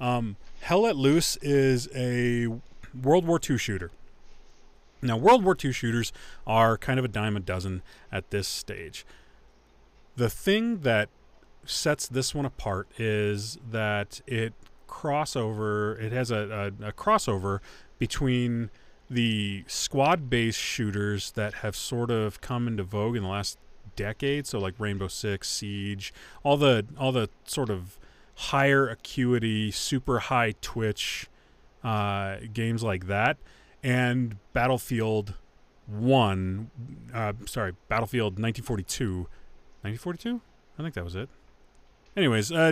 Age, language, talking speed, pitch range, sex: 30-49, English, 120 wpm, 100-125 Hz, male